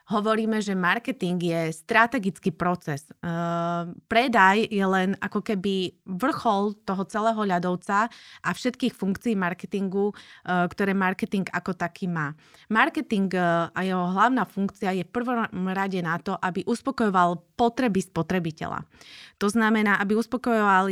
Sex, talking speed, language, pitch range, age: female, 125 wpm, Slovak, 175-225 Hz, 20-39